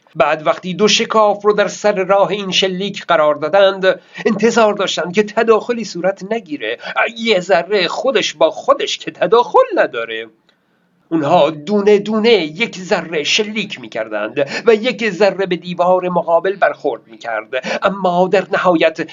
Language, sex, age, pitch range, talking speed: Persian, male, 50-69, 170-230 Hz, 140 wpm